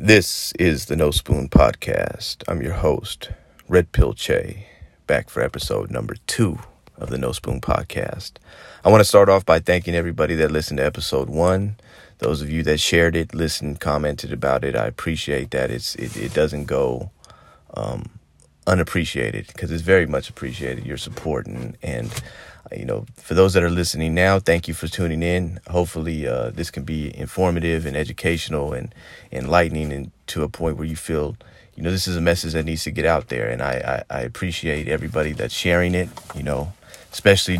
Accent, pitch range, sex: American, 75-90 Hz, male